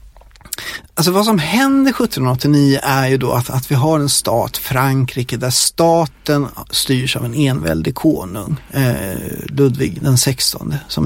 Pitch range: 130-170 Hz